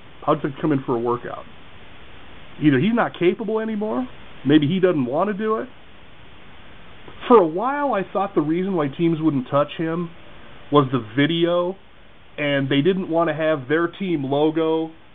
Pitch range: 130-180 Hz